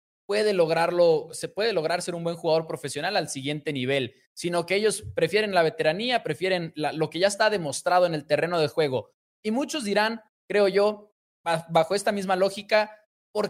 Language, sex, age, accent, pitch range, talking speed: Spanish, male, 20-39, Mexican, 165-215 Hz, 180 wpm